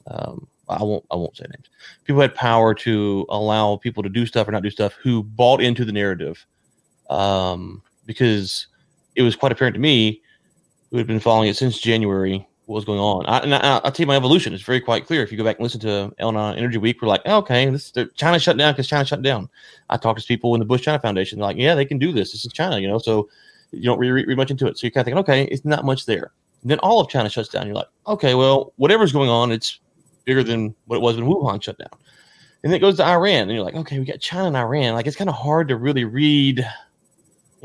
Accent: American